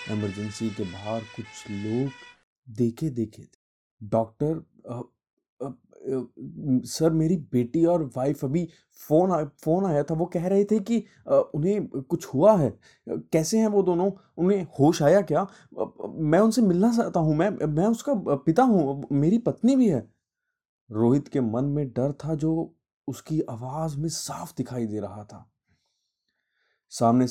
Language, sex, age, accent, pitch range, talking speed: Hindi, male, 20-39, native, 120-170 Hz, 145 wpm